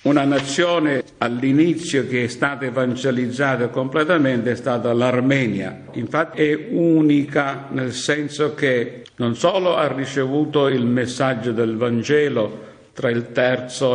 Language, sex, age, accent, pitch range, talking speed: Italian, male, 60-79, native, 120-145 Hz, 120 wpm